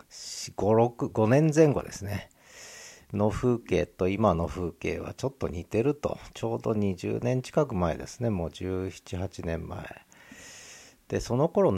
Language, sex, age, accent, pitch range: Japanese, male, 50-69, native, 90-130 Hz